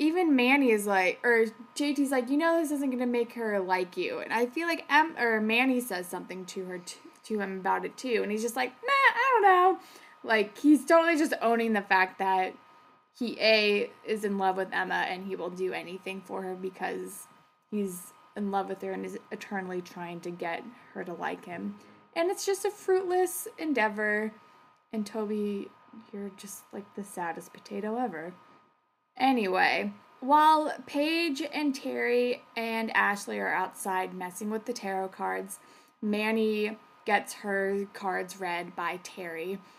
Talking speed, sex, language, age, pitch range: 175 wpm, female, English, 20-39, 195-280 Hz